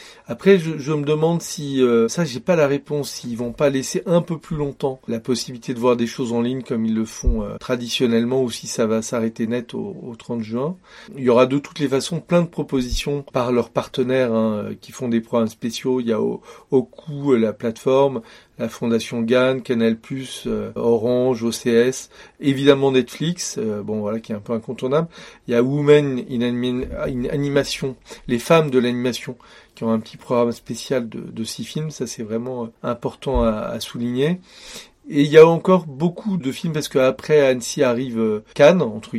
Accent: French